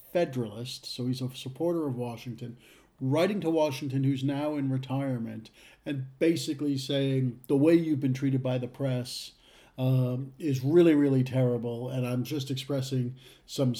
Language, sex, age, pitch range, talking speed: English, male, 50-69, 120-145 Hz, 150 wpm